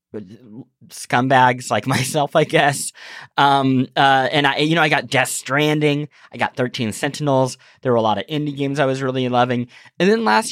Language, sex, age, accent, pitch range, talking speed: English, male, 20-39, American, 125-165 Hz, 190 wpm